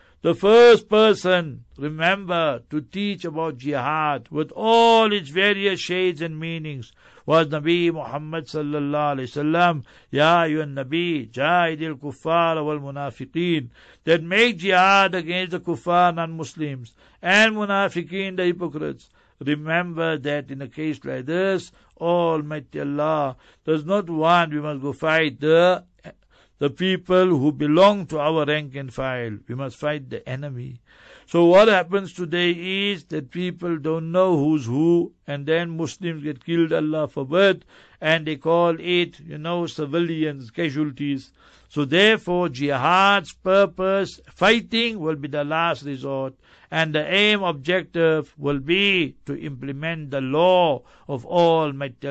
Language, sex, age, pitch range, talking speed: English, male, 60-79, 140-175 Hz, 140 wpm